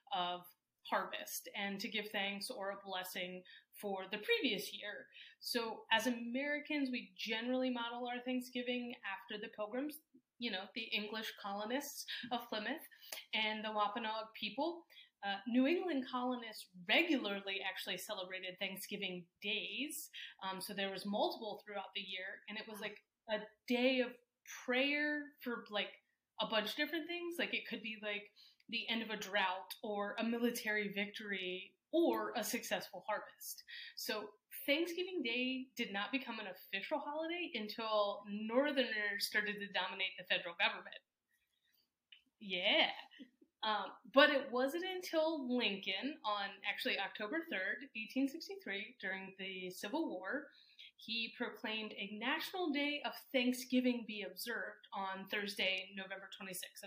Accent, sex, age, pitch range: American, female, 30-49, 200-260 Hz